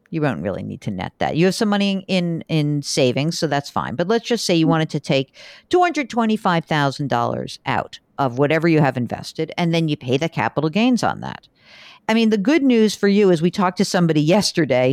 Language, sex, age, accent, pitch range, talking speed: English, female, 50-69, American, 140-185 Hz, 215 wpm